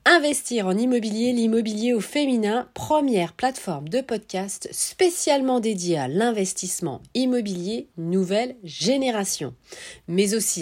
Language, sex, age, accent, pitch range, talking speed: French, female, 40-59, French, 180-260 Hz, 105 wpm